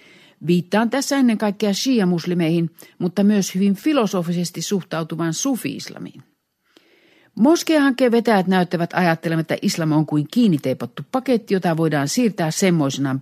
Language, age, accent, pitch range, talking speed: Finnish, 50-69, native, 165-235 Hz, 110 wpm